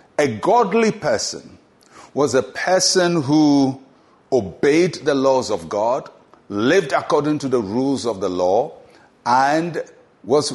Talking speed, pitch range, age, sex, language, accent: 125 wpm, 125-185 Hz, 50-69, male, English, Nigerian